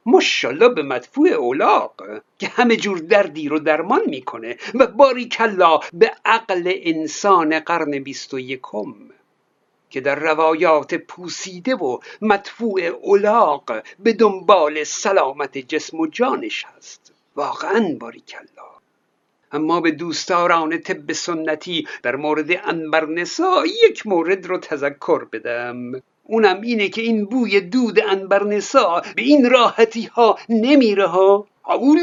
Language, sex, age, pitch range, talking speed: Persian, male, 60-79, 170-250 Hz, 120 wpm